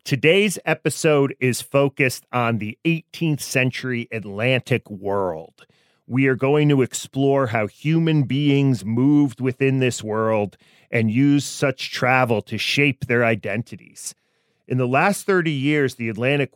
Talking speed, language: 135 wpm, English